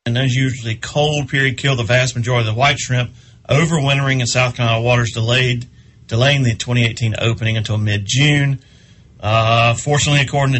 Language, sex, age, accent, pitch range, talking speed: English, male, 40-59, American, 120-140 Hz, 160 wpm